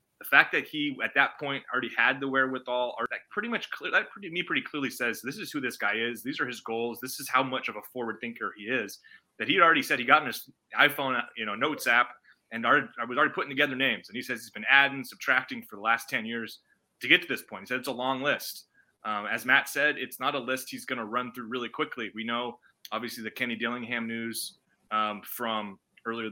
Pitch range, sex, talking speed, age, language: 110-125 Hz, male, 255 wpm, 20-39, English